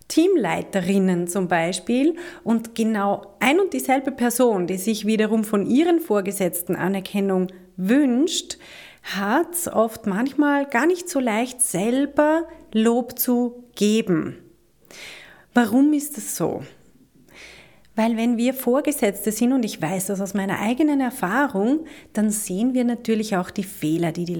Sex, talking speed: female, 135 wpm